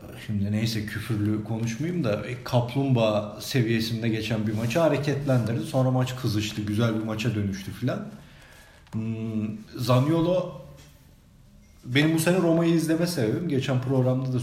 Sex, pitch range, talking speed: male, 115-145 Hz, 120 wpm